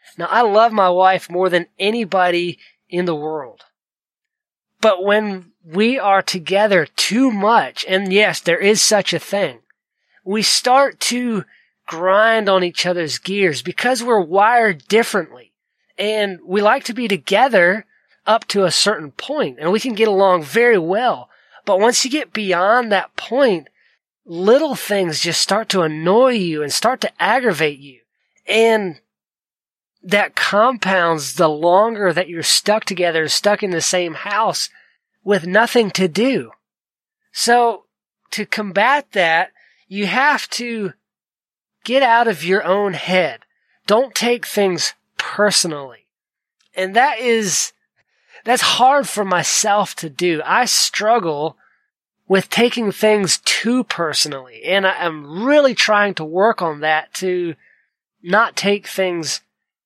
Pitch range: 180-225 Hz